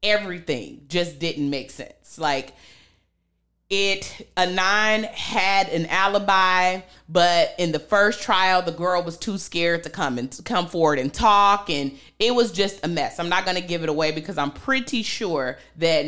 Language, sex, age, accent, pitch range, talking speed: English, female, 30-49, American, 145-180 Hz, 175 wpm